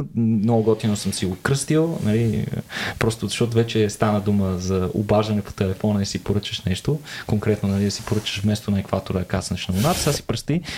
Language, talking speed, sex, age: Bulgarian, 190 wpm, male, 20-39